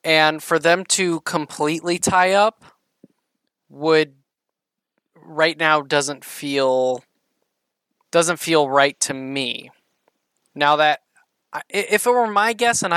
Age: 20-39